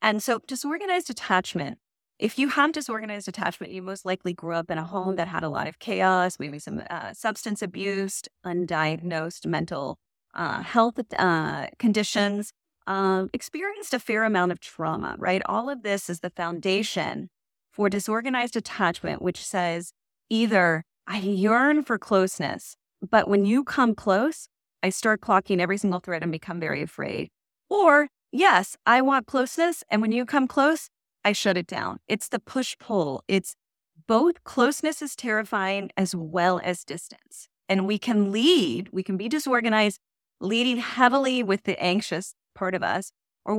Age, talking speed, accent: 30-49, 160 wpm, American